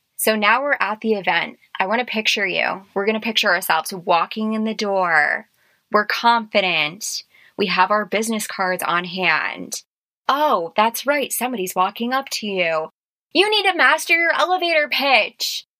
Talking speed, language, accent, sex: 165 wpm, English, American, female